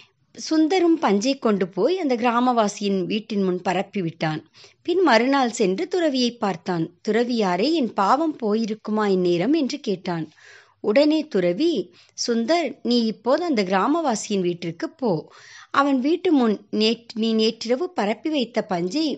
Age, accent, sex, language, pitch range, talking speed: 60-79, native, male, Tamil, 190-275 Hz, 120 wpm